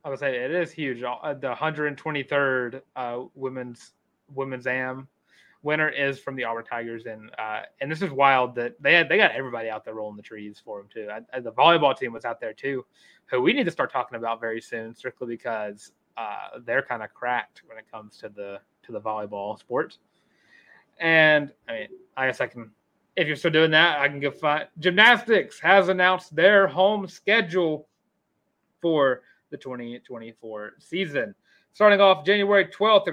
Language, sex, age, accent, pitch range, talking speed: English, male, 20-39, American, 120-195 Hz, 185 wpm